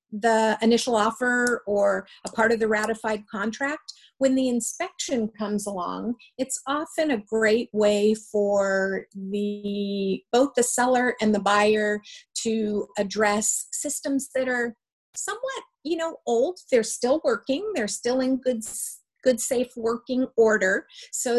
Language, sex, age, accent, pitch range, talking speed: English, female, 50-69, American, 210-255 Hz, 145 wpm